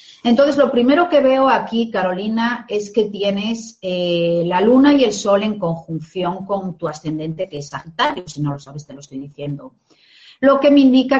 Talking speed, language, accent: 195 wpm, Spanish, Spanish